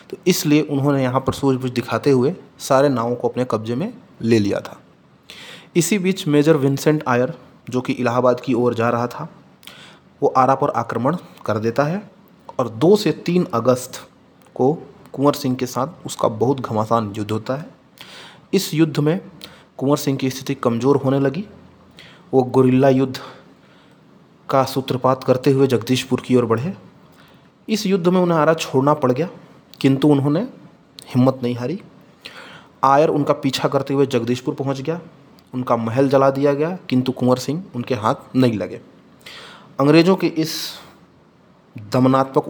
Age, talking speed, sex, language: 30-49, 160 wpm, male, Hindi